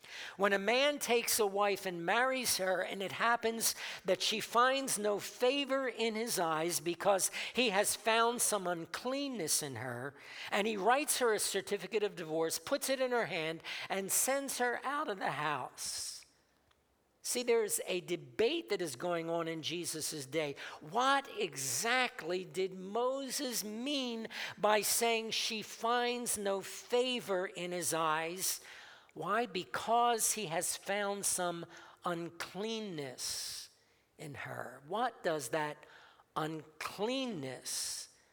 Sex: male